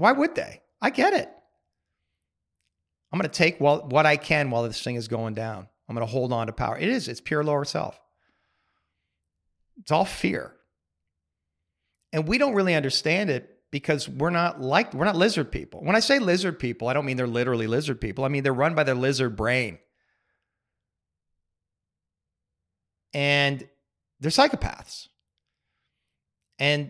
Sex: male